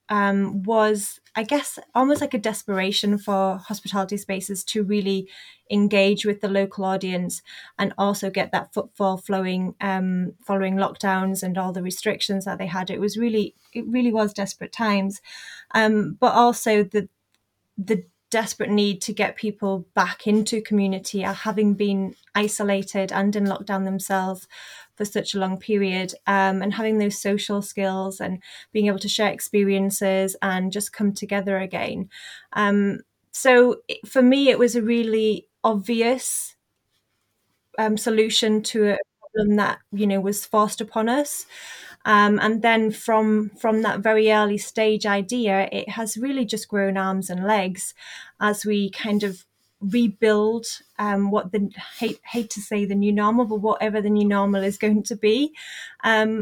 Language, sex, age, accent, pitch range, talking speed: English, female, 20-39, British, 195-220 Hz, 155 wpm